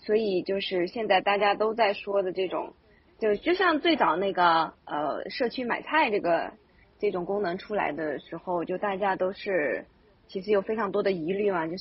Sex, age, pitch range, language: female, 20-39, 185-230 Hz, Chinese